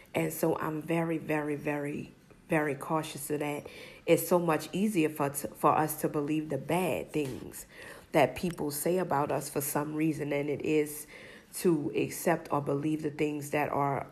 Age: 40-59